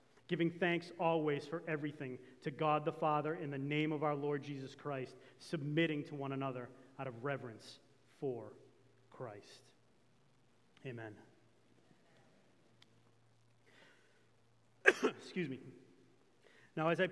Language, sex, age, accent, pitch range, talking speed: English, male, 30-49, American, 135-180 Hz, 110 wpm